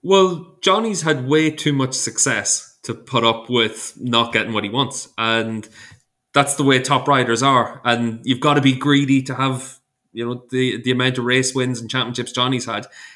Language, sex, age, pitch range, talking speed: English, male, 20-39, 115-135 Hz, 195 wpm